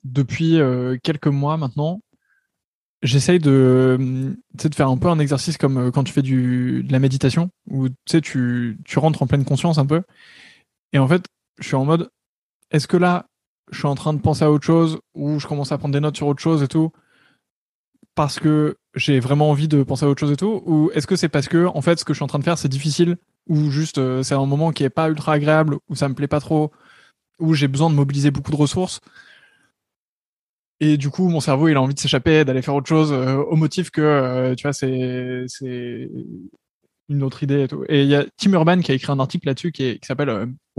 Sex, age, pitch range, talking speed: male, 20-39, 140-165 Hz, 235 wpm